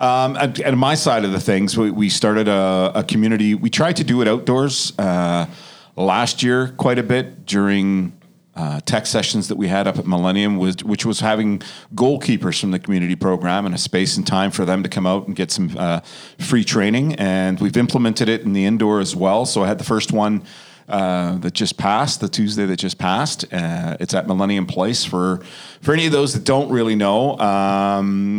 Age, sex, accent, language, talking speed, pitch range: 40-59, male, American, English, 210 wpm, 95-125 Hz